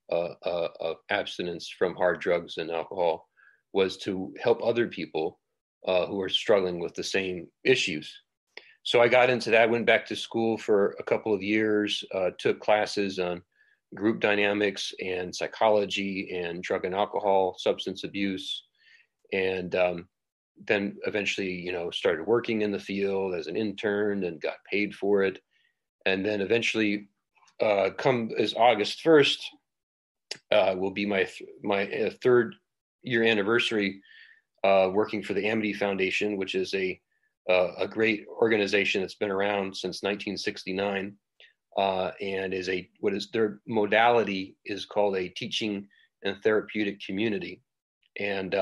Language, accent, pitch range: English, American, 95-110 Hz